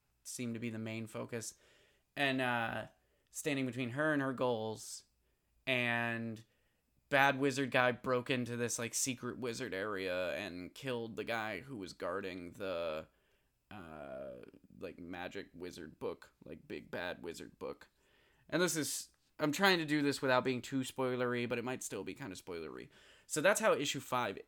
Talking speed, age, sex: 165 wpm, 20-39, male